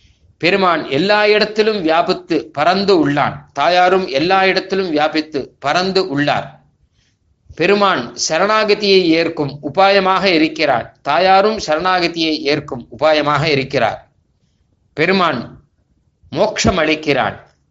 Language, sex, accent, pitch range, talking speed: Tamil, male, native, 145-190 Hz, 85 wpm